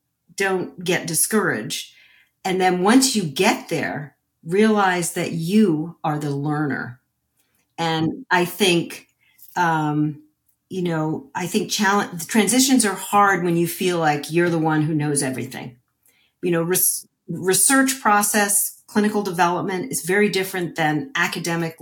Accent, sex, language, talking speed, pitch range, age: American, female, English, 135 wpm, 155-200 Hz, 50-69